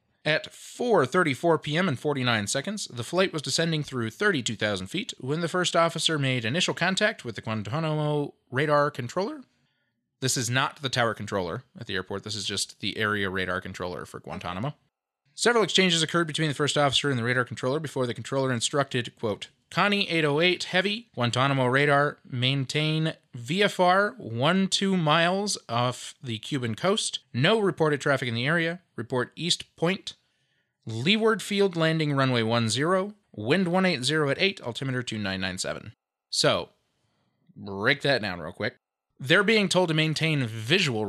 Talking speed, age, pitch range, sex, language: 170 wpm, 30-49, 120-170 Hz, male, English